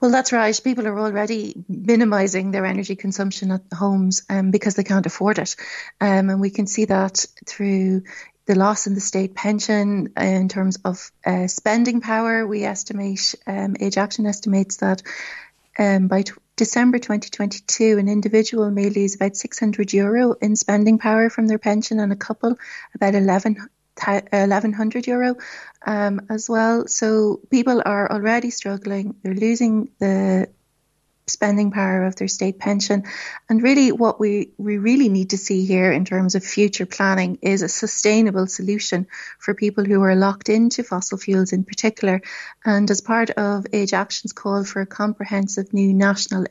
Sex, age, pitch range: female, 30-49, 195-220 Hz